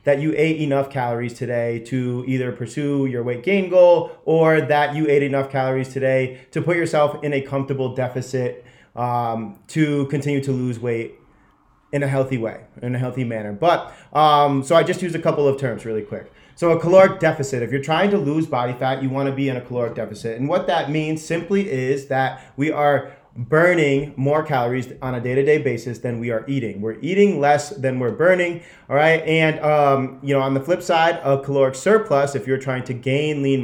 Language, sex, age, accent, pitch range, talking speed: English, male, 30-49, American, 125-155 Hz, 210 wpm